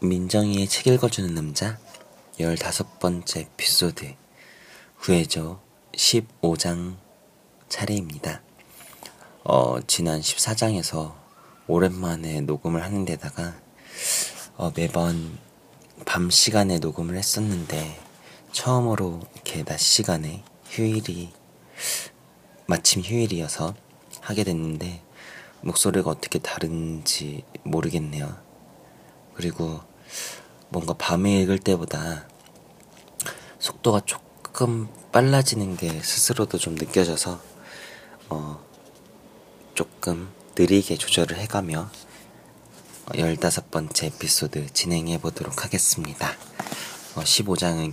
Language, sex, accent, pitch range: Korean, male, native, 80-100 Hz